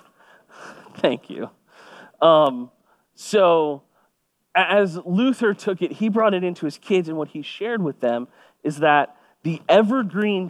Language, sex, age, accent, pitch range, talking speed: English, male, 30-49, American, 145-195 Hz, 135 wpm